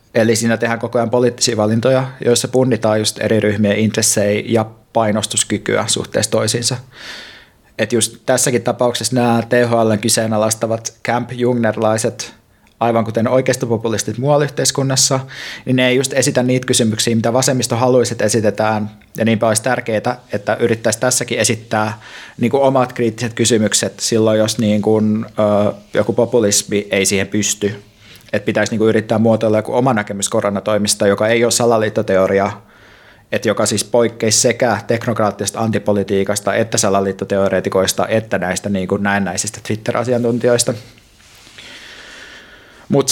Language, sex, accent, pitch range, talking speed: Finnish, male, native, 105-120 Hz, 125 wpm